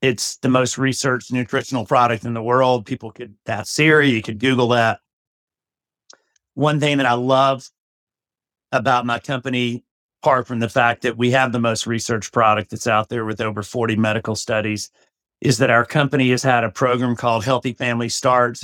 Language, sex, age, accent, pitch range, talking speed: English, male, 50-69, American, 115-135 Hz, 180 wpm